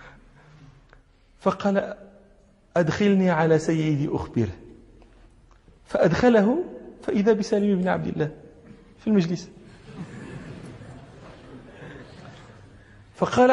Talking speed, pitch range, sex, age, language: 60 wpm, 175-245 Hz, male, 40-59, Arabic